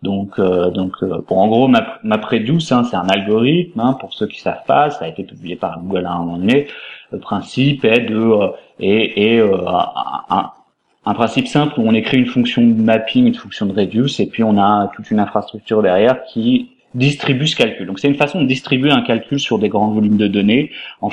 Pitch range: 105-125 Hz